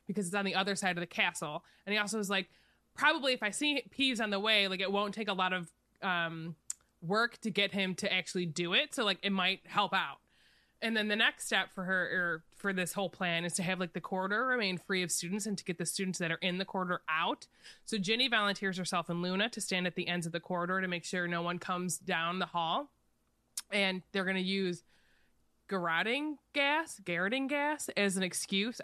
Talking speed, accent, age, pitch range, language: 235 wpm, American, 20-39, 175-210 Hz, English